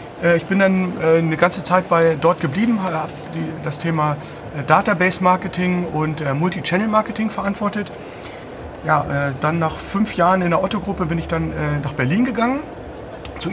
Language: German